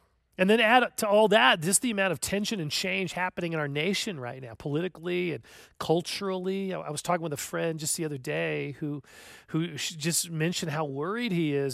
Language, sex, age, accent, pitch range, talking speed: English, male, 40-59, American, 155-205 Hz, 205 wpm